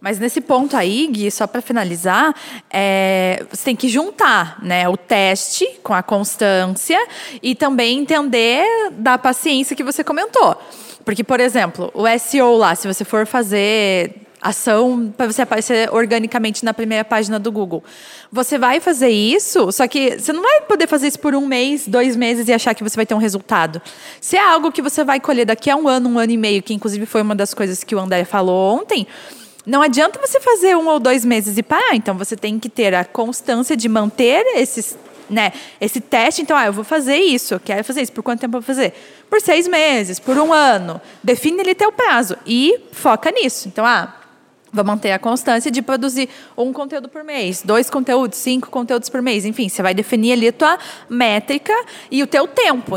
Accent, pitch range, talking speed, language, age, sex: Brazilian, 215-285 Hz, 200 wpm, Portuguese, 20-39, female